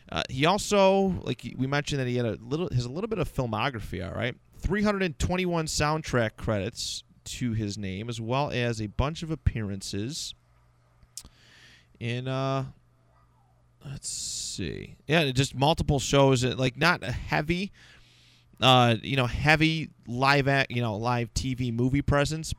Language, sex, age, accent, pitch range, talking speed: English, male, 30-49, American, 105-145 Hz, 155 wpm